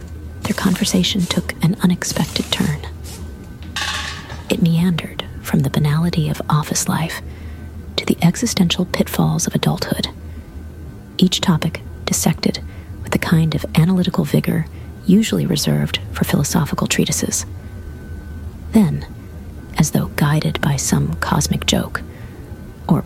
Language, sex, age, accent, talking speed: English, female, 40-59, American, 110 wpm